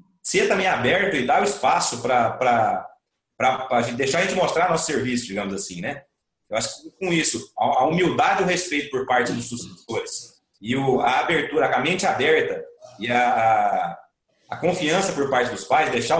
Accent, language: Brazilian, Portuguese